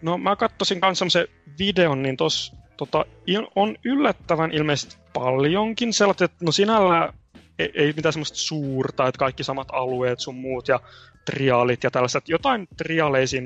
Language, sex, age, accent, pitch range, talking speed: Finnish, male, 20-39, native, 125-165 Hz, 155 wpm